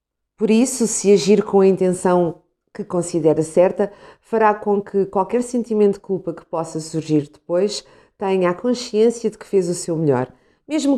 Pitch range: 170-210 Hz